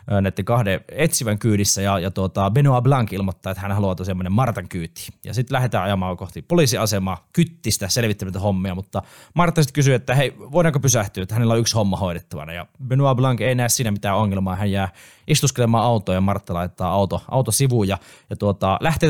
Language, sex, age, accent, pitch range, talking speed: Finnish, male, 20-39, native, 95-125 Hz, 190 wpm